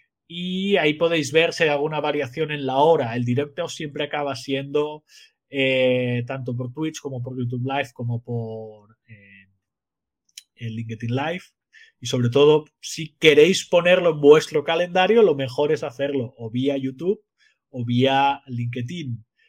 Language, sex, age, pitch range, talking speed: Spanish, male, 30-49, 135-190 Hz, 150 wpm